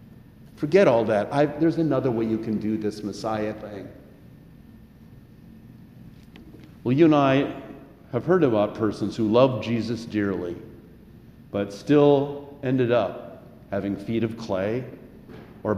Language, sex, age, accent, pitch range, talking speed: English, male, 50-69, American, 105-145 Hz, 125 wpm